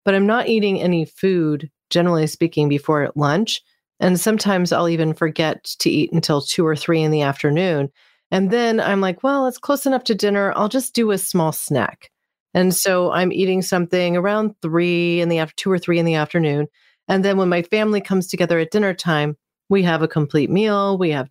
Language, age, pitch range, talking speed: English, 40-59, 155-190 Hz, 205 wpm